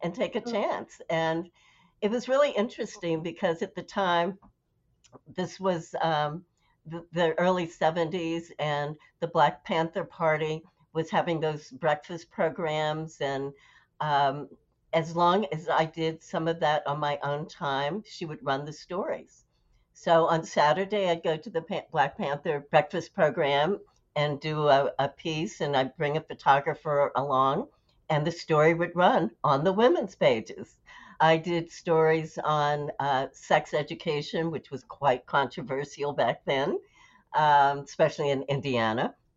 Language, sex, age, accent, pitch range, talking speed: English, female, 60-79, American, 145-170 Hz, 150 wpm